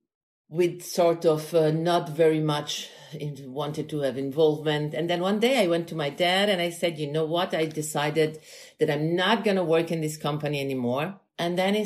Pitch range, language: 150-195 Hz, English